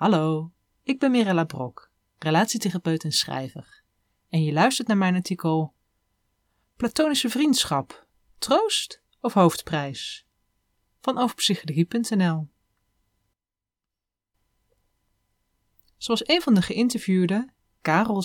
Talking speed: 90 wpm